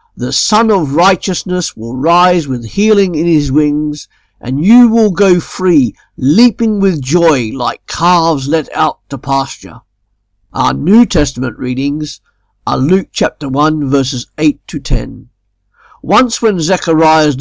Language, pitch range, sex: English, 130-175 Hz, male